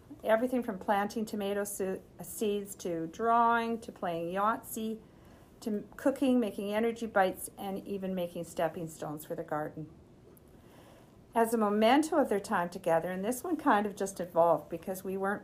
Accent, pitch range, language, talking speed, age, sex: American, 175-225 Hz, English, 155 wpm, 50-69, female